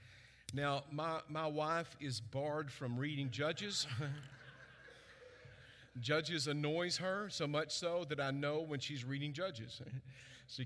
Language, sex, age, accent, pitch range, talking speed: English, male, 50-69, American, 130-165 Hz, 130 wpm